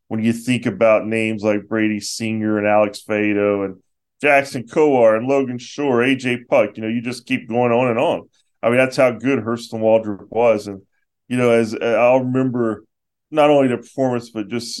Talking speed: 200 wpm